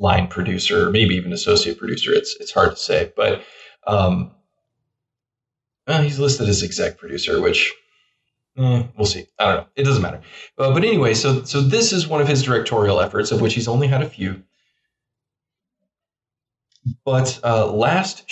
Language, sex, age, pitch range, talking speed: English, male, 20-39, 105-145 Hz, 165 wpm